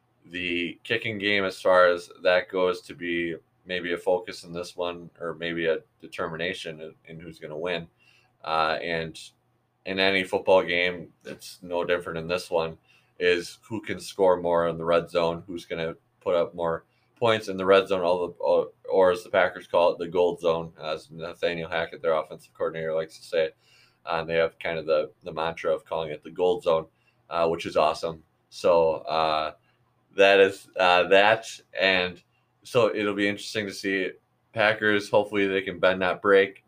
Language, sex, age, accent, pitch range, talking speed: English, male, 20-39, American, 85-125 Hz, 195 wpm